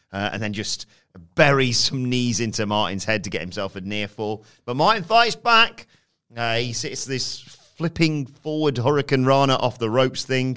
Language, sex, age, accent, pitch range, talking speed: English, male, 30-49, British, 110-140 Hz, 180 wpm